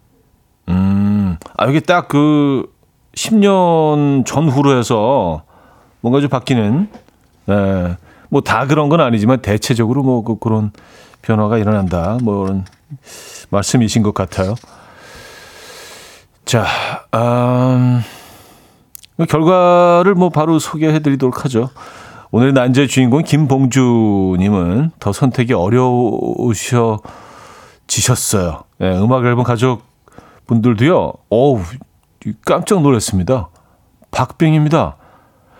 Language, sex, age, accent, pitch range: Korean, male, 40-59, native, 105-150 Hz